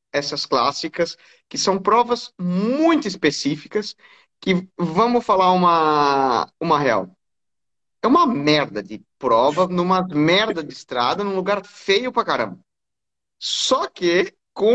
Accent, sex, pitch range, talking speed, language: Brazilian, male, 155-220 Hz, 120 wpm, Portuguese